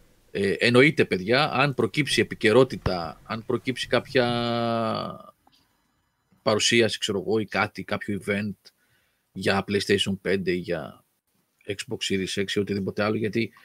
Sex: male